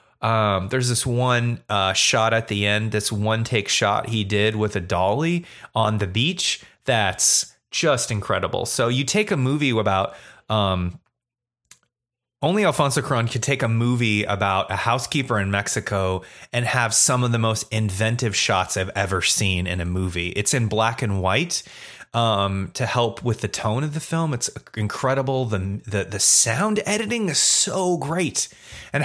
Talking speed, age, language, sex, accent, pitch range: 170 wpm, 30-49, English, male, American, 100-135 Hz